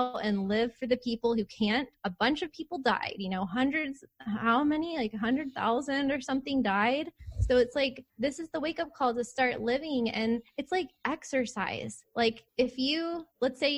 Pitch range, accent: 200-245 Hz, American